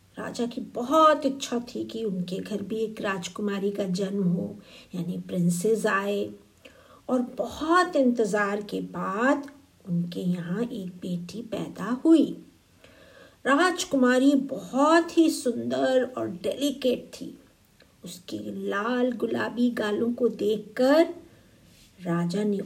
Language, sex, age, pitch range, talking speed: Hindi, female, 50-69, 185-270 Hz, 115 wpm